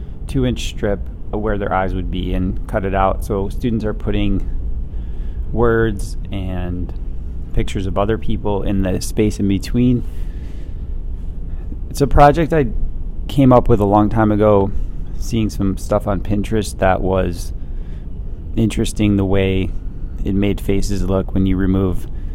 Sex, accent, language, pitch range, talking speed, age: male, American, English, 85-110 Hz, 150 wpm, 30-49